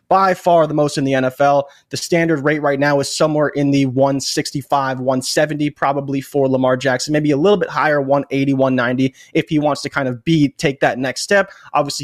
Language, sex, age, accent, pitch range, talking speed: English, male, 20-39, American, 140-175 Hz, 205 wpm